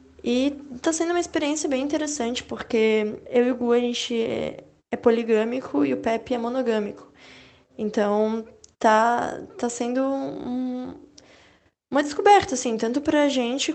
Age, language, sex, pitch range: 10-29, Portuguese, female, 215-250 Hz